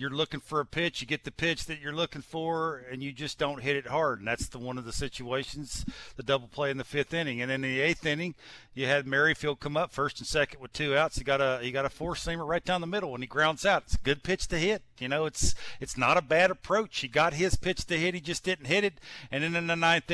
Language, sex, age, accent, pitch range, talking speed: English, male, 50-69, American, 135-180 Hz, 285 wpm